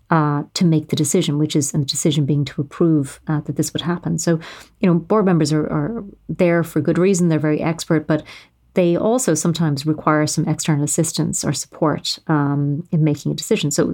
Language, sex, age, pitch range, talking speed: English, female, 30-49, 150-170 Hz, 200 wpm